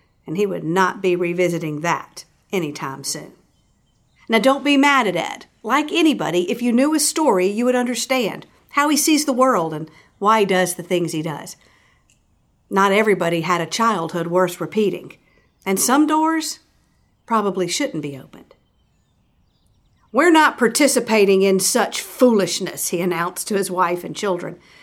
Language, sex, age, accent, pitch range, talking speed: English, female, 50-69, American, 180-255 Hz, 155 wpm